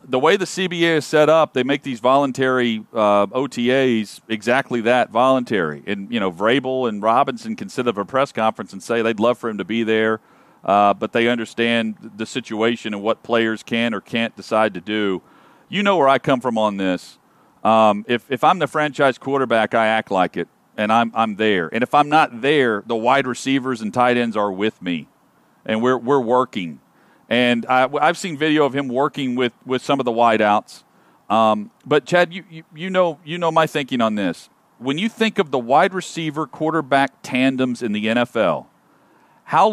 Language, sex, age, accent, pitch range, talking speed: English, male, 40-59, American, 110-150 Hz, 200 wpm